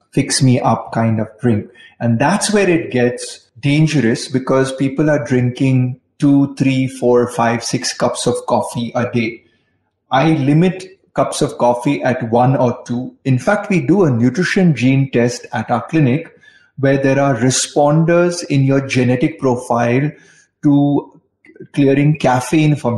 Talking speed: 150 wpm